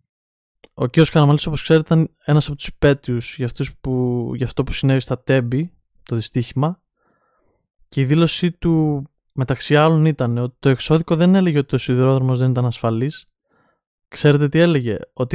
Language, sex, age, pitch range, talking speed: Greek, male, 20-39, 125-150 Hz, 160 wpm